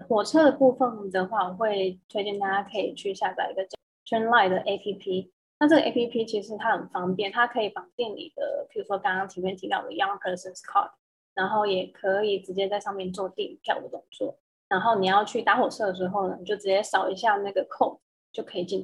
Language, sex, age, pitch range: Chinese, female, 10-29, 195-275 Hz